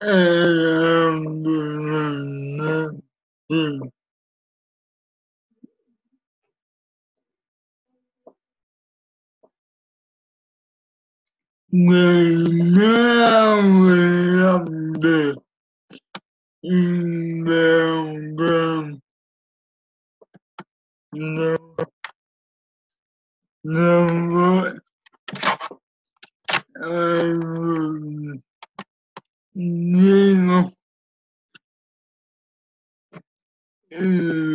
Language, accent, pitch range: English, American, 155-180 Hz